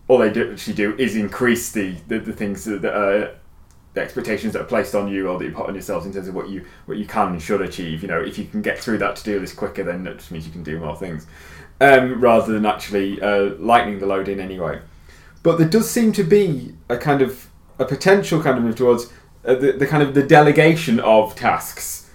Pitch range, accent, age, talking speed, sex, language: 100-130 Hz, British, 20-39, 255 wpm, male, English